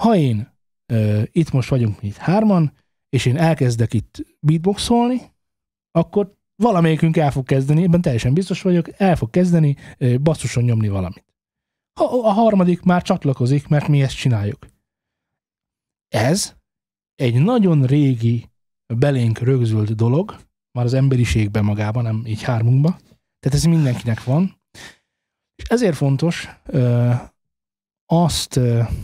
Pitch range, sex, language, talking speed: 115-165 Hz, male, Hungarian, 120 wpm